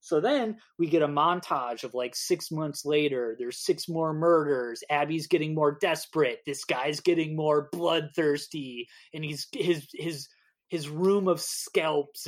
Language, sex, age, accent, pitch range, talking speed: English, male, 30-49, American, 140-205 Hz, 155 wpm